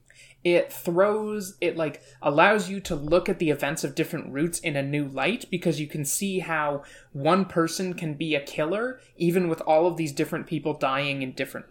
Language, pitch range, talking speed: English, 145-185 Hz, 200 wpm